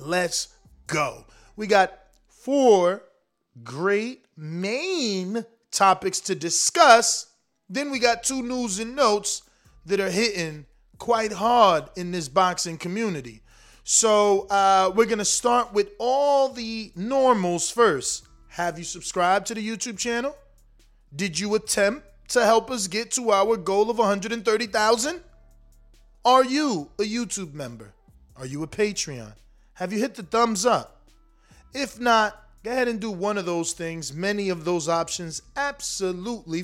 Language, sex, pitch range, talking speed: English, male, 175-230 Hz, 140 wpm